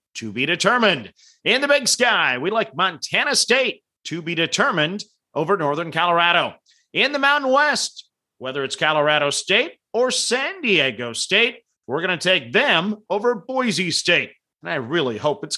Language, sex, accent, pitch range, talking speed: English, male, American, 170-250 Hz, 160 wpm